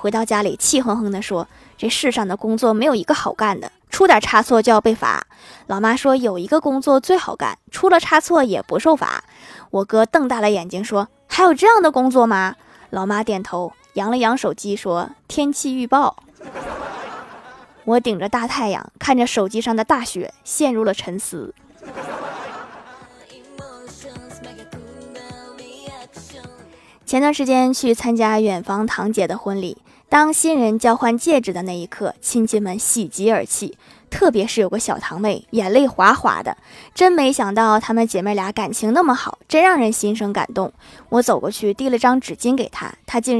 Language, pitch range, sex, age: Chinese, 205-285 Hz, female, 20-39